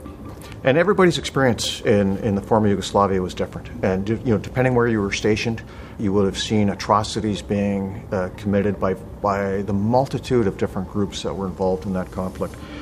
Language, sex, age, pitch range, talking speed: English, male, 50-69, 95-105 Hz, 185 wpm